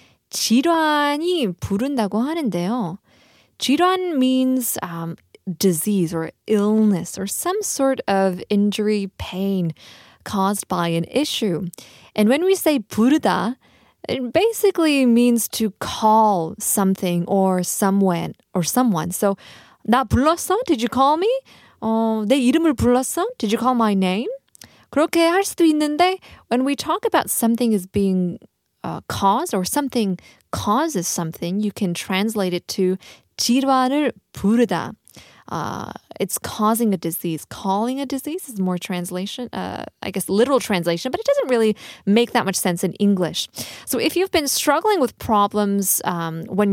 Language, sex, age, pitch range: Korean, female, 20-39, 190-275 Hz